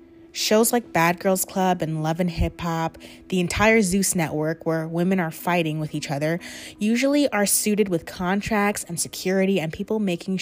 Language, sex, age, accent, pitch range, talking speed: English, female, 20-39, American, 155-195 Hz, 180 wpm